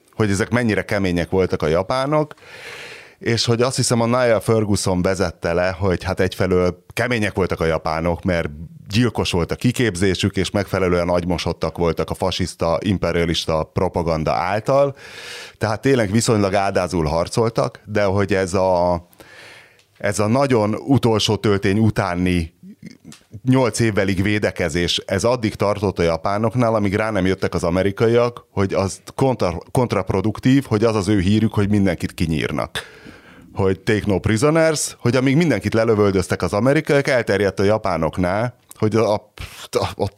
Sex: male